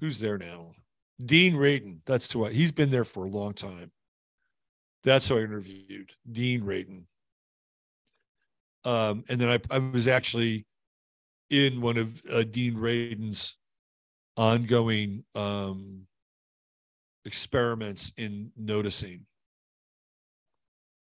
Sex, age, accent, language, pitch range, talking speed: male, 50-69, American, English, 100-130 Hz, 110 wpm